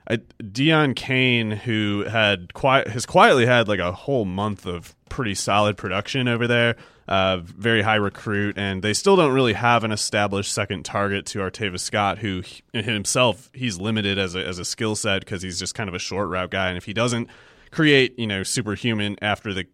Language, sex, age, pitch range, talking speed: English, male, 30-49, 95-115 Hz, 200 wpm